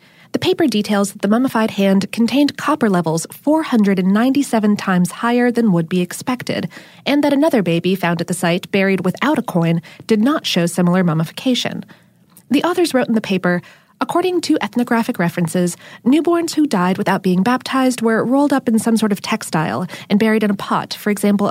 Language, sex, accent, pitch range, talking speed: English, female, American, 180-260 Hz, 180 wpm